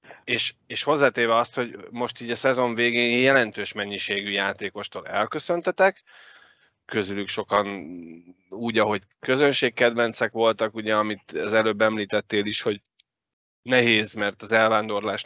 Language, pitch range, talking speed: Hungarian, 105-120 Hz, 120 wpm